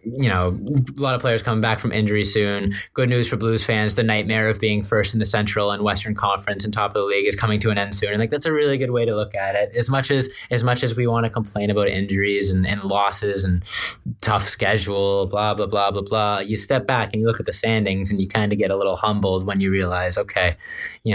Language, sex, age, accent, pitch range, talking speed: English, male, 20-39, American, 95-110 Hz, 265 wpm